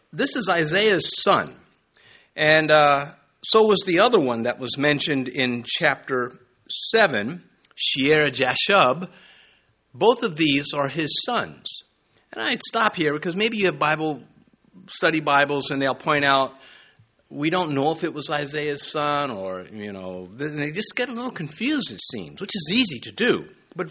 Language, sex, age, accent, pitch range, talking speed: English, male, 50-69, American, 140-185 Hz, 165 wpm